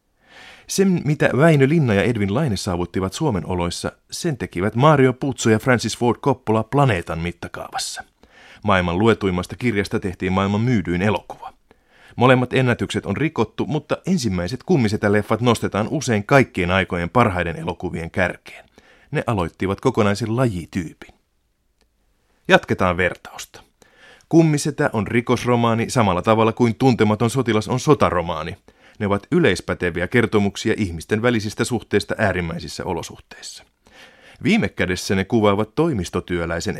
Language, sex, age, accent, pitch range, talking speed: Finnish, male, 30-49, native, 90-120 Hz, 115 wpm